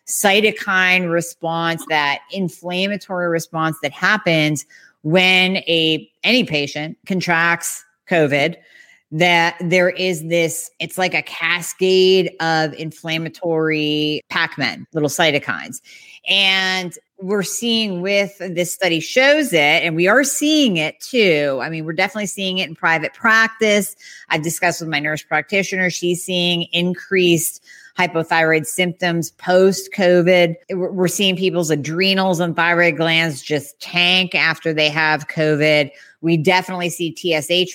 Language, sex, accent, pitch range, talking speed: English, female, American, 165-190 Hz, 125 wpm